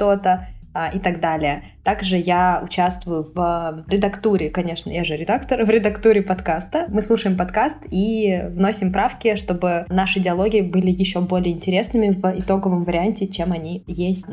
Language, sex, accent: Russian, female, native